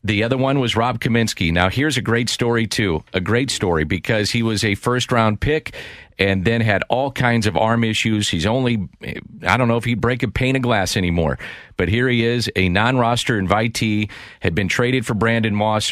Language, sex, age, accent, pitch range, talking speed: English, male, 40-59, American, 100-120 Hz, 205 wpm